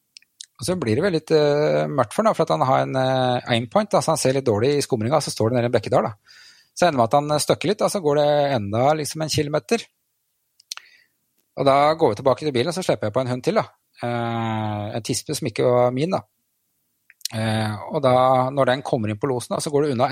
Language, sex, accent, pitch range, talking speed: English, male, Norwegian, 120-155 Hz, 225 wpm